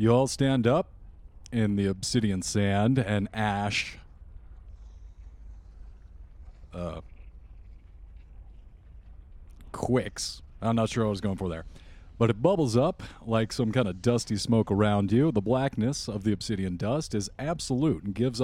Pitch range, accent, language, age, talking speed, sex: 90-120 Hz, American, English, 40-59, 140 wpm, male